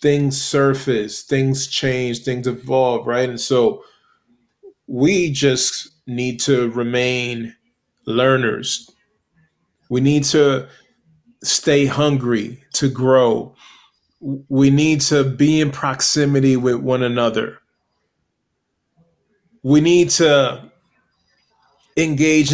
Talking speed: 95 wpm